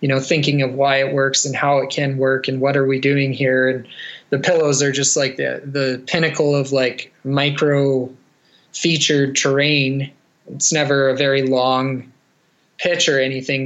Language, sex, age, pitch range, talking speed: English, male, 20-39, 135-145 Hz, 175 wpm